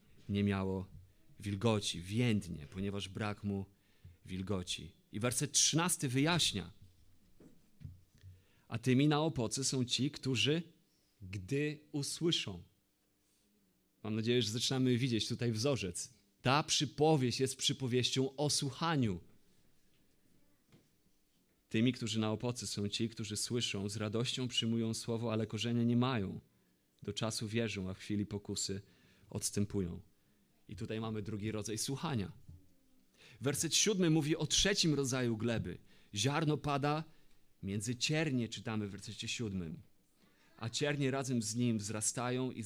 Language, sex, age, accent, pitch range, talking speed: Polish, male, 40-59, native, 100-135 Hz, 120 wpm